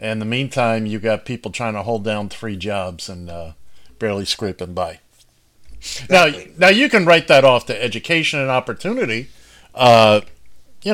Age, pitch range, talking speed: 50-69, 105-145 Hz, 165 wpm